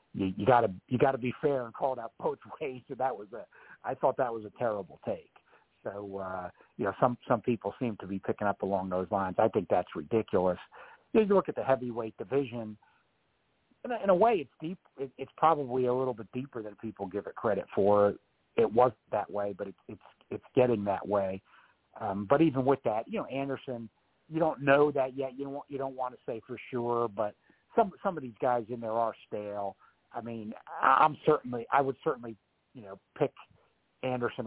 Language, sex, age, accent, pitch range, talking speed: English, male, 60-79, American, 100-135 Hz, 215 wpm